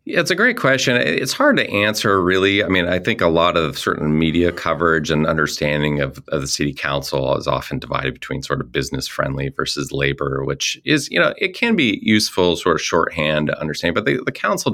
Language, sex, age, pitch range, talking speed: English, male, 30-49, 75-90 Hz, 220 wpm